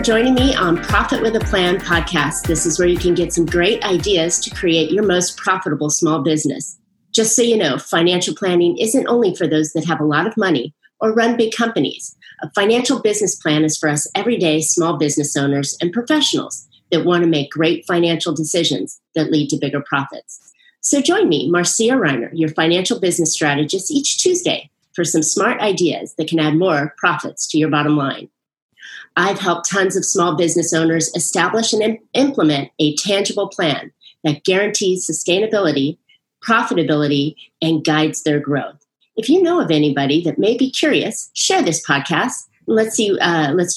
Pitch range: 155-205 Hz